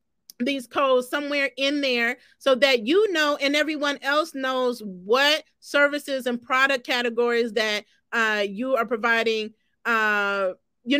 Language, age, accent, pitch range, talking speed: English, 40-59, American, 260-350 Hz, 135 wpm